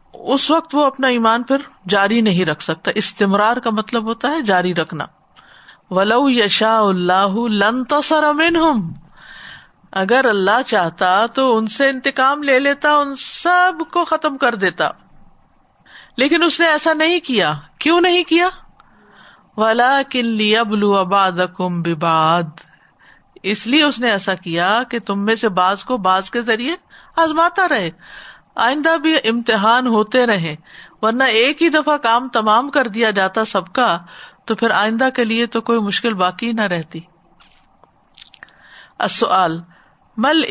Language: Urdu